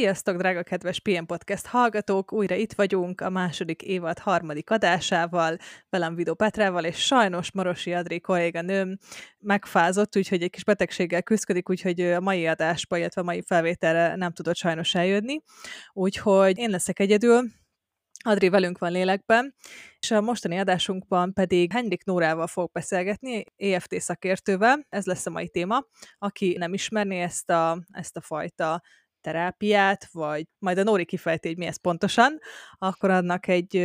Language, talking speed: Hungarian, 150 wpm